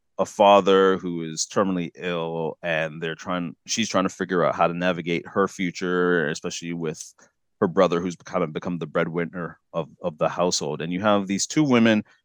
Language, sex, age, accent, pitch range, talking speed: English, male, 30-49, American, 85-100 Hz, 190 wpm